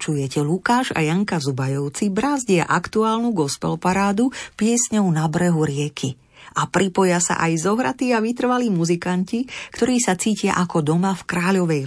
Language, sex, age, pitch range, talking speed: Slovak, female, 40-59, 155-215 Hz, 135 wpm